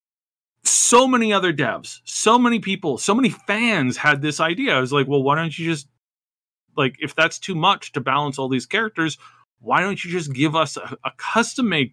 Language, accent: English, American